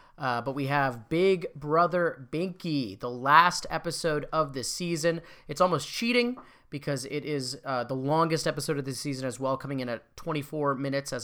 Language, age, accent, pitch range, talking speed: English, 30-49, American, 135-170 Hz, 180 wpm